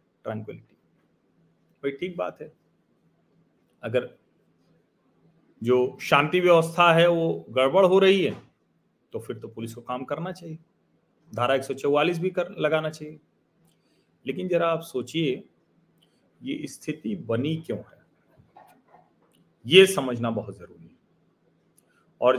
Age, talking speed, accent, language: 40-59, 120 wpm, native, Hindi